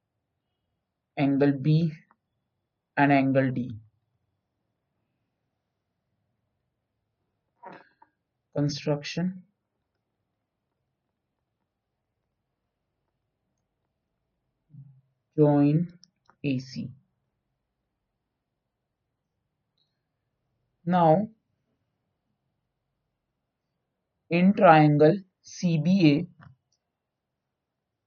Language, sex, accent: Hindi, male, native